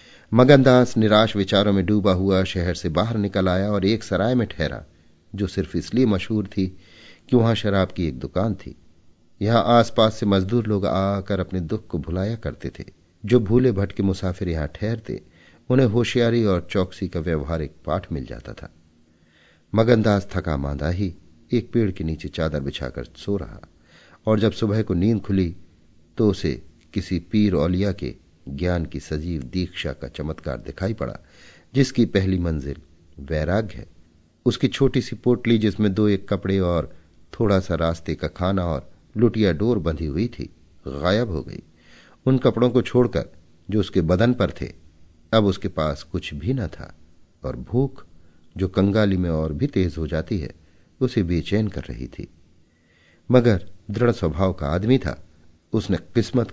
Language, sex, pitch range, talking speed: Hindi, male, 80-110 Hz, 140 wpm